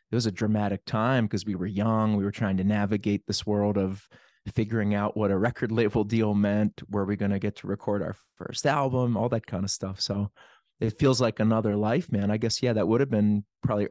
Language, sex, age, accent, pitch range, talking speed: English, male, 30-49, American, 100-120 Hz, 235 wpm